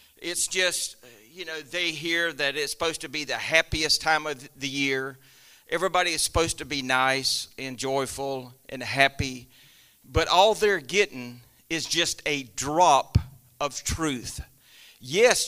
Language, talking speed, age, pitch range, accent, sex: English, 145 wpm, 50-69, 140-185 Hz, American, male